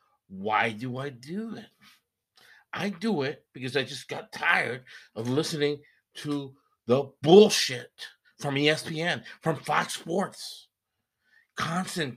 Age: 50-69